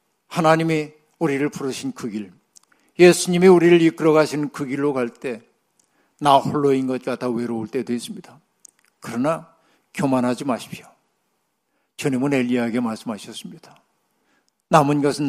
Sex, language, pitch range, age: male, Korean, 130-170 Hz, 60-79